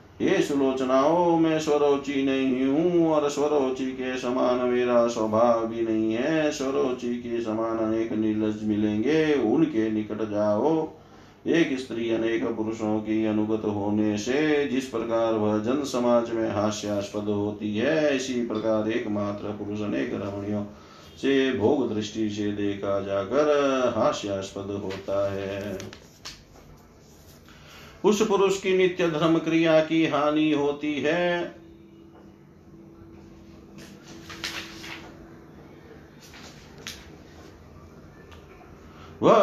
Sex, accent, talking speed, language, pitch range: male, native, 105 wpm, Hindi, 105-130 Hz